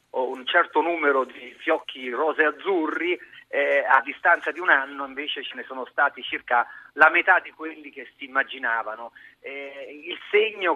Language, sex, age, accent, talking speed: Italian, male, 40-59, native, 160 wpm